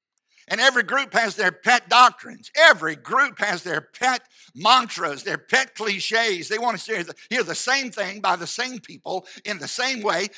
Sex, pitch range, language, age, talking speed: male, 200-245 Hz, English, 60-79, 190 wpm